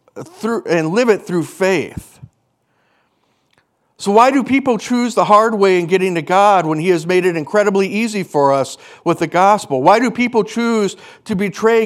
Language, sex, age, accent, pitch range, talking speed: English, male, 50-69, American, 180-220 Hz, 175 wpm